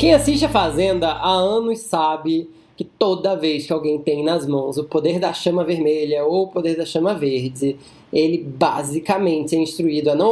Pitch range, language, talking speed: 150-200 Hz, Portuguese, 185 wpm